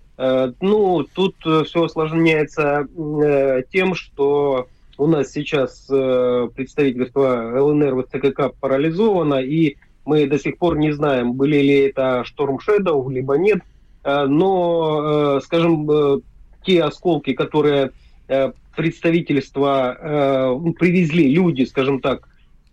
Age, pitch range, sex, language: 30-49, 130-155 Hz, male, Russian